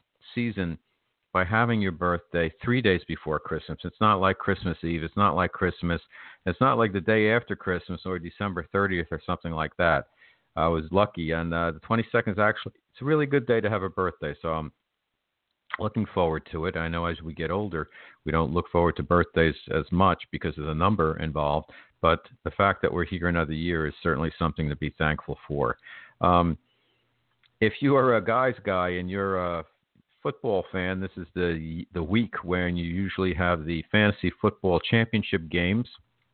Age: 50-69